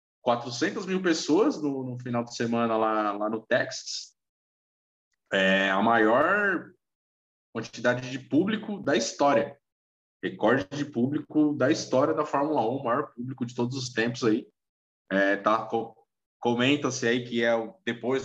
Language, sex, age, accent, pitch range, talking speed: Portuguese, male, 20-39, Brazilian, 105-135 Hz, 145 wpm